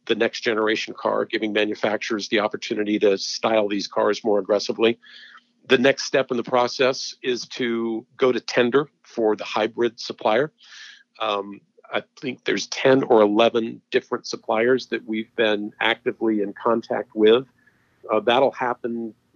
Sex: male